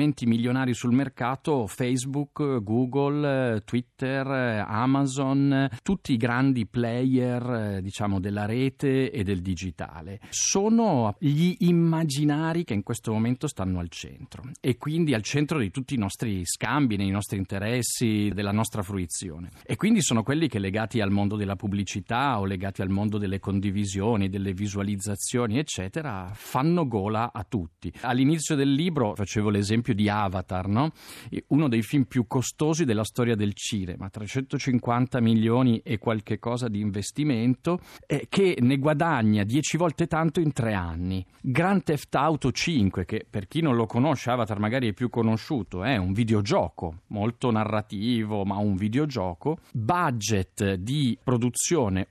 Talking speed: 145 wpm